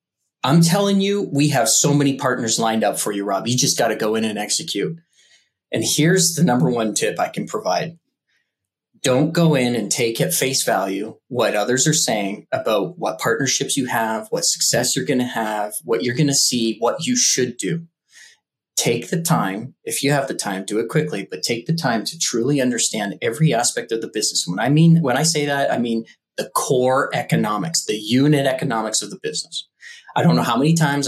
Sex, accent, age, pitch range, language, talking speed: male, American, 30-49, 115-150 Hz, English, 210 wpm